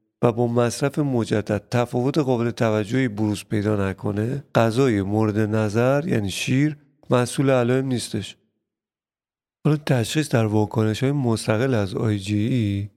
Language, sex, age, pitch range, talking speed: Persian, male, 40-59, 110-135 Hz, 115 wpm